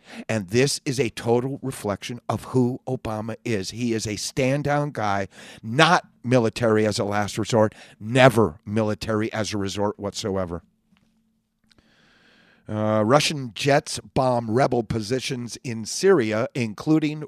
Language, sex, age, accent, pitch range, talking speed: English, male, 50-69, American, 110-140 Hz, 125 wpm